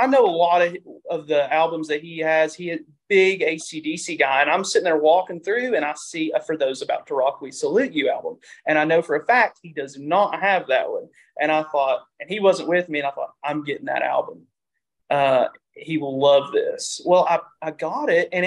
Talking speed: 235 wpm